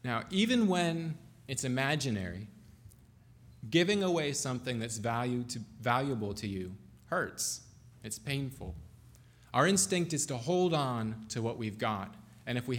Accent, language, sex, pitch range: American, English, male, 110-140 Hz